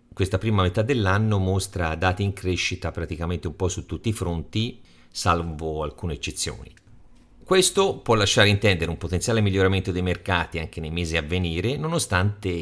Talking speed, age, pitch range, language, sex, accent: 155 wpm, 50-69, 85-110 Hz, Italian, male, native